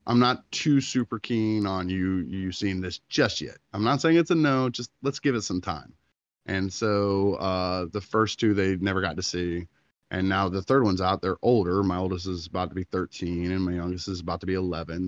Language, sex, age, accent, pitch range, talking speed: English, male, 20-39, American, 85-105 Hz, 230 wpm